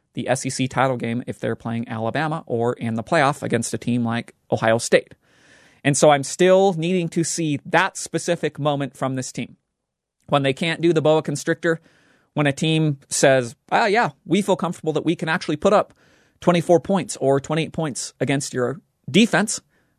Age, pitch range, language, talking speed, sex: 30-49, 135-175 Hz, English, 185 wpm, male